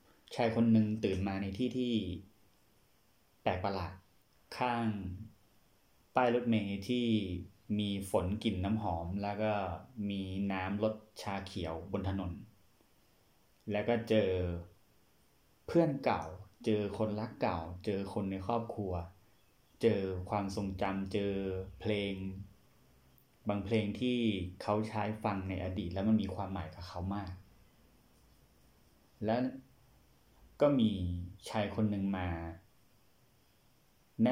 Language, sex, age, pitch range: Thai, male, 30-49, 95-110 Hz